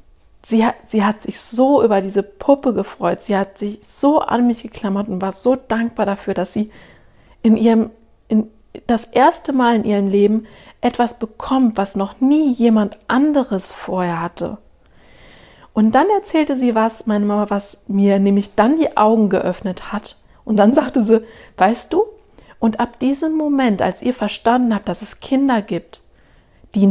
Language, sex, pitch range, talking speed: German, female, 200-265 Hz, 160 wpm